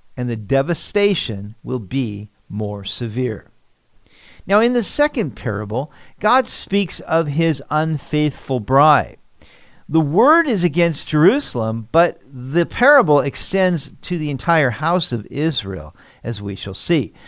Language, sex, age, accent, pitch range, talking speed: English, male, 50-69, American, 120-175 Hz, 130 wpm